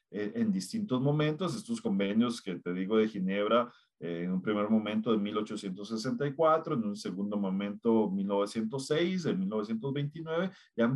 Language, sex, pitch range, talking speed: Spanish, male, 105-155 Hz, 140 wpm